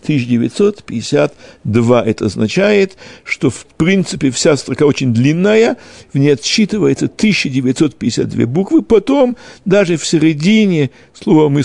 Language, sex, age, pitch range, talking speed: Russian, male, 60-79, 135-185 Hz, 110 wpm